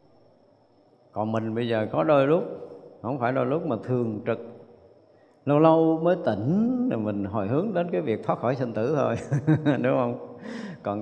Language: Vietnamese